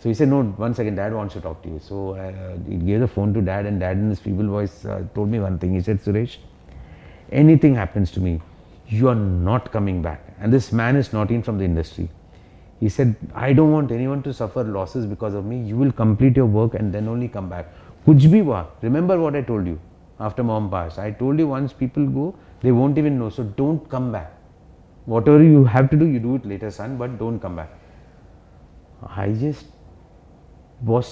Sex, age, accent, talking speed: male, 30-49, Indian, 220 wpm